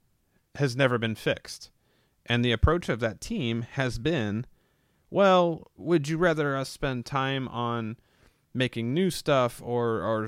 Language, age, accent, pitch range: English, 30-49, American, 100-135 Hz